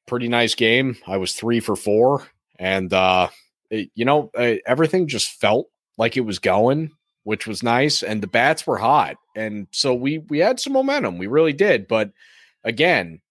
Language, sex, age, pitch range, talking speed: English, male, 30-49, 105-145 Hz, 185 wpm